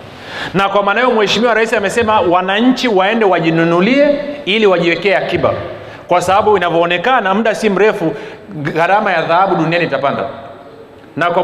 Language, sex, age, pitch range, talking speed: Swahili, male, 40-59, 155-210 Hz, 135 wpm